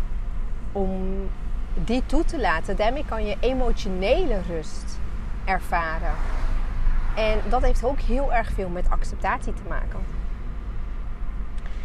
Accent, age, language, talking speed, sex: Dutch, 30-49, English, 110 wpm, female